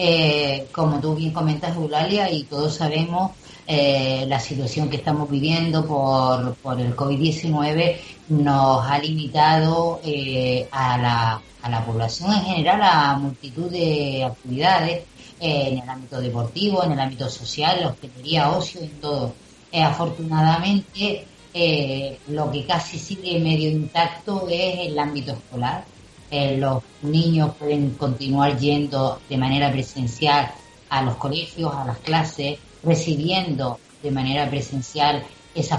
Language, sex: Spanish, female